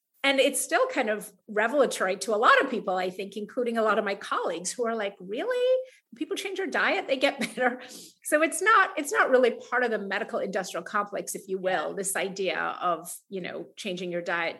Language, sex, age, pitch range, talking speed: English, female, 30-49, 195-255 Hz, 220 wpm